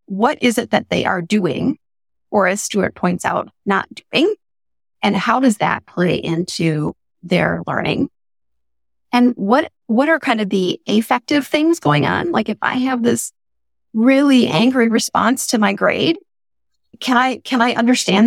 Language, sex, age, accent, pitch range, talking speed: English, female, 30-49, American, 185-255 Hz, 160 wpm